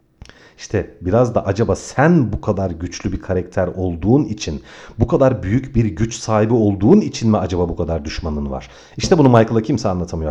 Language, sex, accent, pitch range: Turkish, male, native, 90-130 Hz